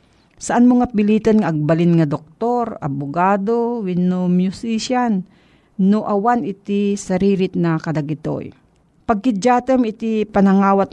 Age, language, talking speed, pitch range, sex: 50-69, Filipino, 100 wpm, 165-215 Hz, female